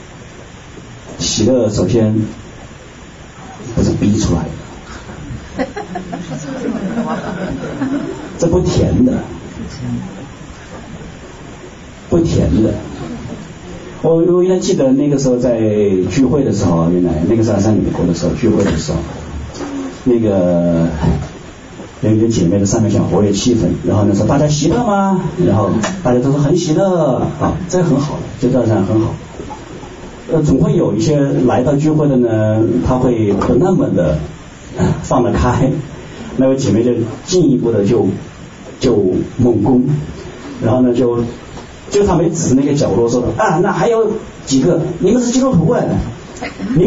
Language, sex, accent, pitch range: Chinese, male, native, 105-160 Hz